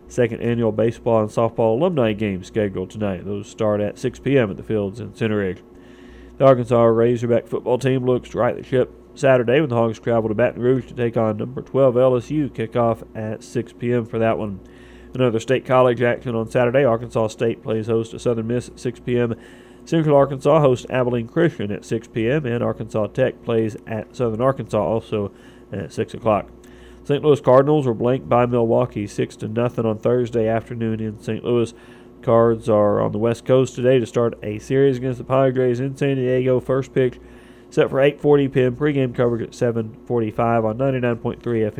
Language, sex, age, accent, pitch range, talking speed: English, male, 40-59, American, 110-130 Hz, 180 wpm